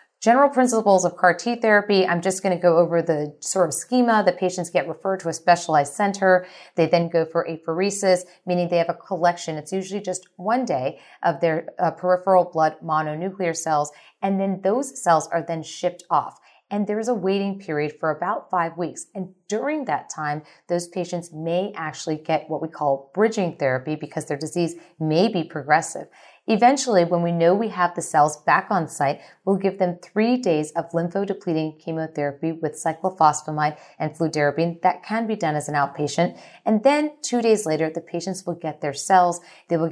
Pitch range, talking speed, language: 155-190 Hz, 190 wpm, English